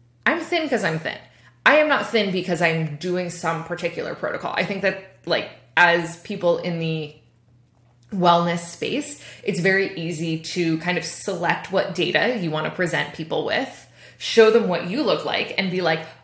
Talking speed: 180 wpm